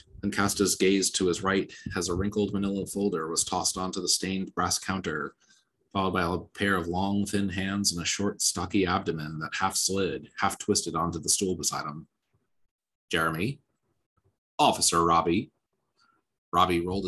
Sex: male